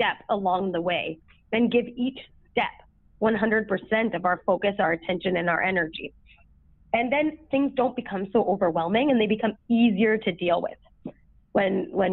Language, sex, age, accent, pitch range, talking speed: English, female, 20-39, American, 190-240 Hz, 165 wpm